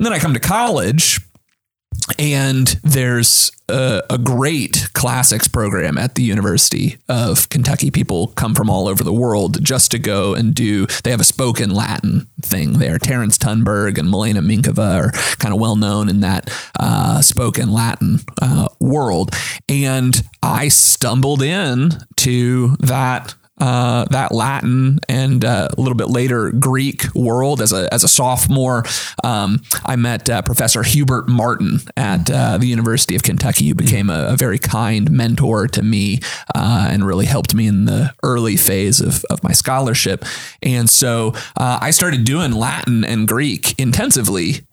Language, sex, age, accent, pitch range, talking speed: English, male, 30-49, American, 110-130 Hz, 160 wpm